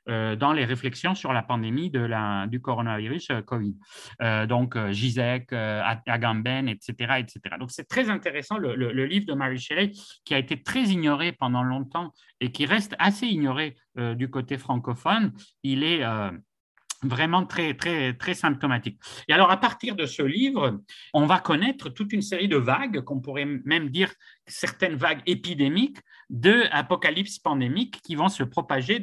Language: French